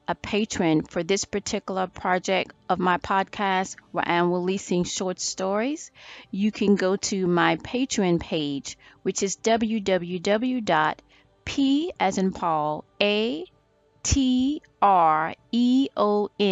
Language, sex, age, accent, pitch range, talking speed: English, female, 30-49, American, 175-220 Hz, 110 wpm